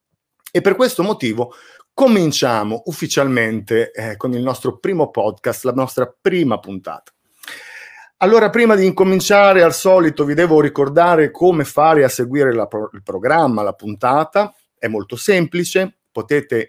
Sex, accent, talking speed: male, native, 135 wpm